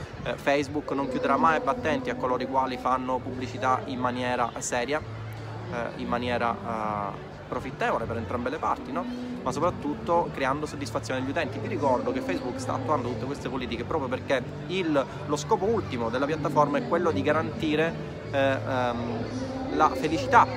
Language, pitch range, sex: Italian, 120-145 Hz, male